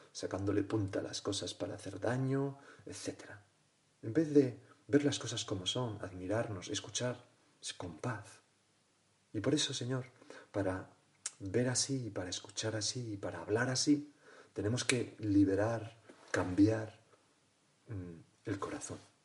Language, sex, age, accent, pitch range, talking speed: Spanish, male, 40-59, Spanish, 100-125 Hz, 130 wpm